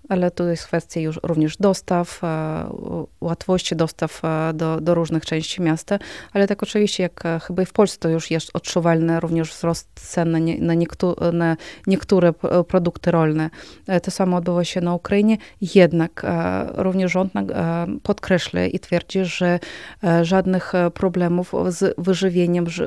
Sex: female